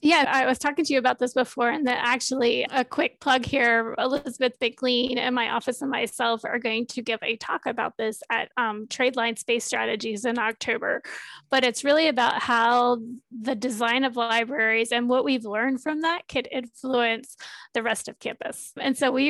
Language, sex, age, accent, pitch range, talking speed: English, female, 20-39, American, 235-270 Hz, 195 wpm